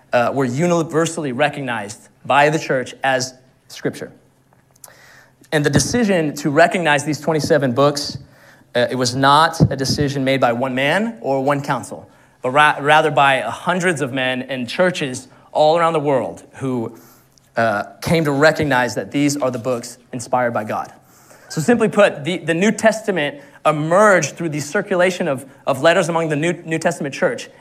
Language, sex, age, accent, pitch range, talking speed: English, male, 30-49, American, 130-160 Hz, 165 wpm